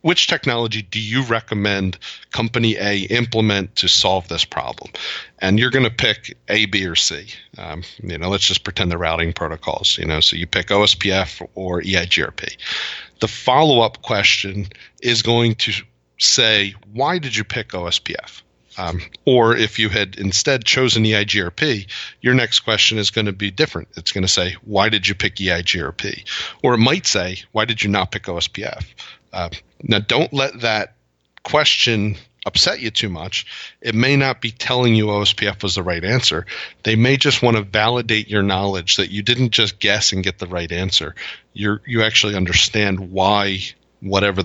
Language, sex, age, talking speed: English, male, 40-59, 175 wpm